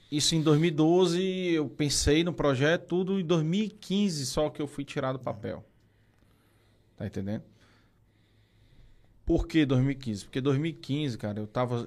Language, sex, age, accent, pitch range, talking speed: Portuguese, male, 20-39, Brazilian, 110-140 Hz, 135 wpm